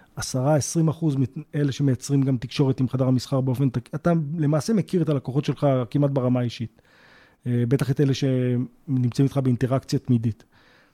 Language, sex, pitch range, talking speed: Hebrew, male, 125-150 Hz, 150 wpm